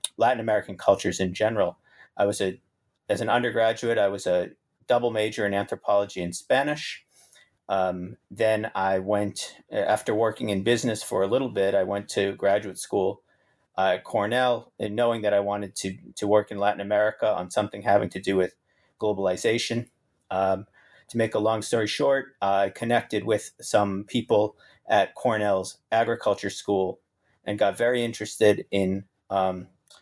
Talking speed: 160 wpm